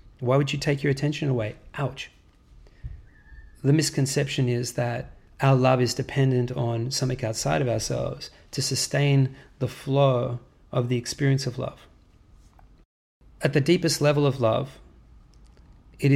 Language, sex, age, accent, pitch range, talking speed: English, male, 30-49, Australian, 110-135 Hz, 135 wpm